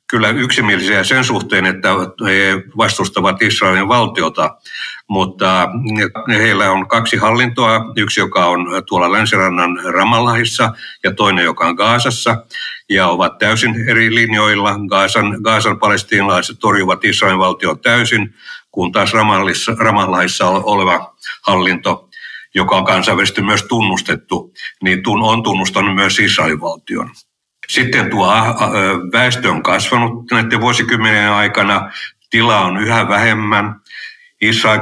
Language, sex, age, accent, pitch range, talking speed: Finnish, male, 60-79, native, 100-115 Hz, 110 wpm